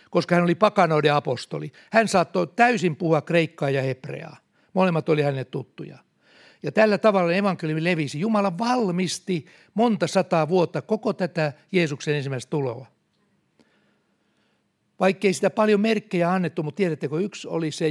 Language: Finnish